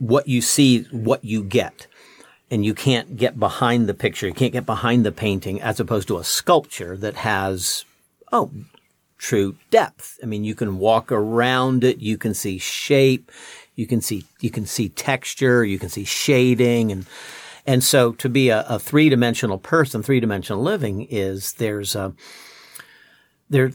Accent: American